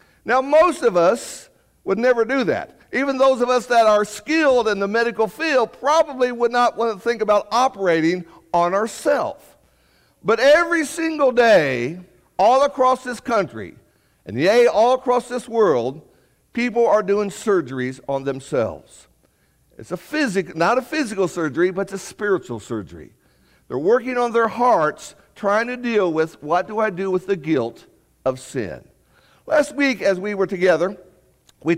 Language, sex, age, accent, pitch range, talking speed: English, male, 60-79, American, 185-255 Hz, 160 wpm